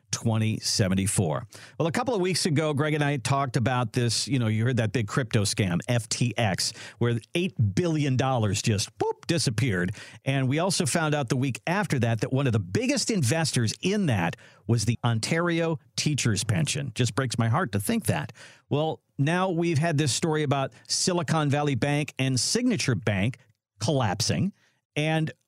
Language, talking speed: English, 170 wpm